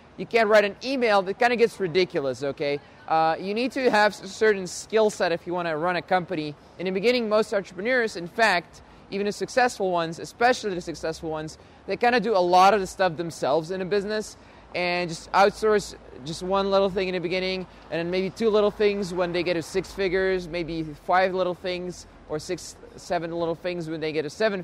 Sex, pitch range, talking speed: male, 170-210 Hz, 220 wpm